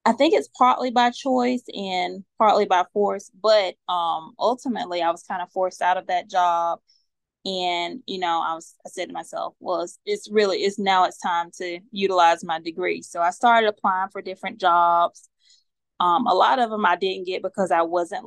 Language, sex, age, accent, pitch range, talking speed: English, female, 20-39, American, 175-205 Hz, 195 wpm